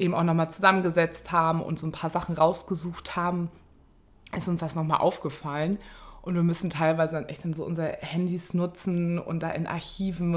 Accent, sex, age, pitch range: German, female, 20-39, 155-180 Hz